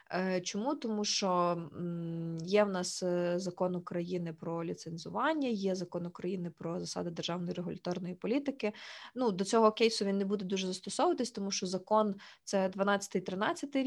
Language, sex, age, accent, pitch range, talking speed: Ukrainian, female, 20-39, native, 175-205 Hz, 145 wpm